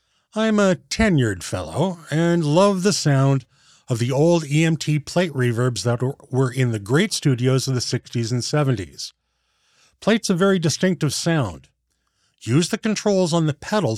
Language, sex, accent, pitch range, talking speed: English, male, American, 125-175 Hz, 155 wpm